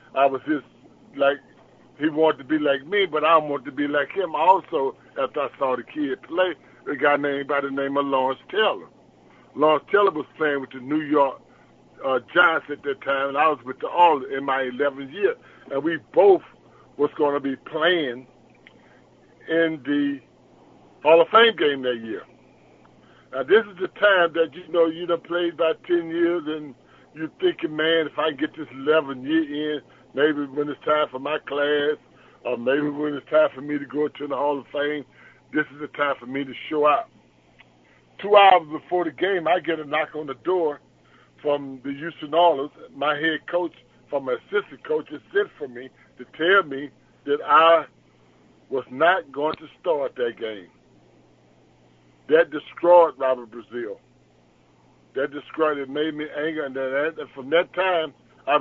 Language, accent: English, American